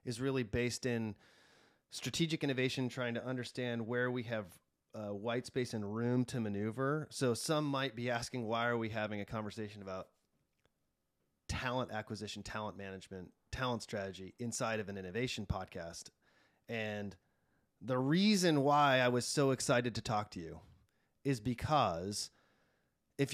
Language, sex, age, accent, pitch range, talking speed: English, male, 30-49, American, 110-140 Hz, 145 wpm